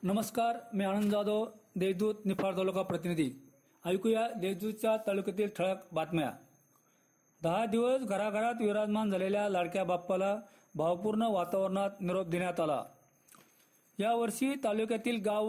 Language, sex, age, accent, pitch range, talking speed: Marathi, male, 40-59, native, 195-235 Hz, 110 wpm